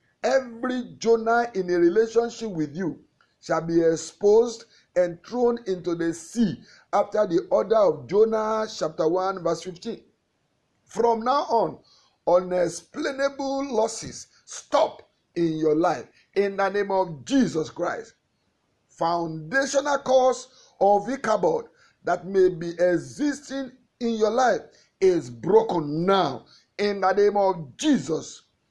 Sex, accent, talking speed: male, Nigerian, 120 wpm